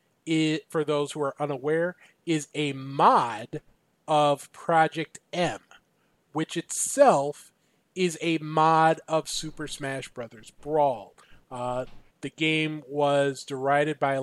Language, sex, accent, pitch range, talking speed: English, male, American, 135-165 Hz, 120 wpm